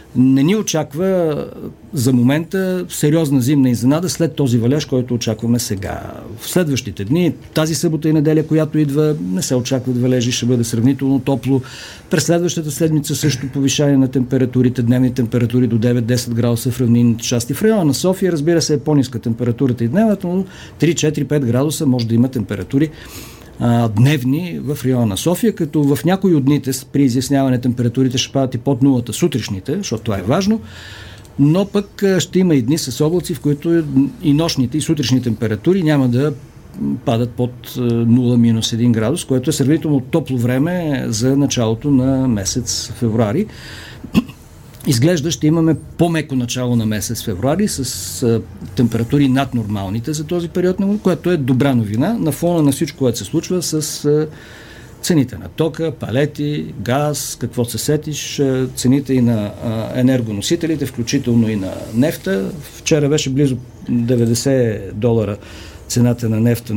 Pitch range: 120-155 Hz